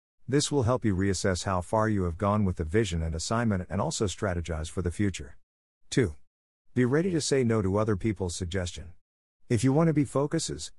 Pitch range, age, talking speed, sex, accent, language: 85-120 Hz, 50-69, 205 wpm, male, American, English